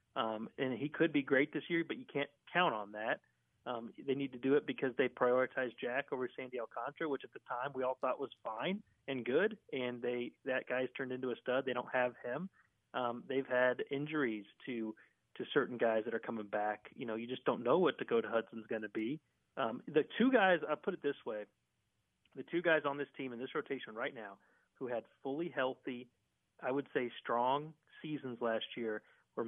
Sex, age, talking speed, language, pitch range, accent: male, 40-59, 215 wpm, English, 120-145 Hz, American